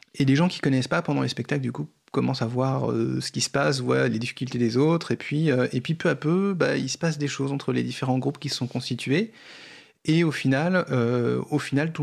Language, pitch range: French, 120-145 Hz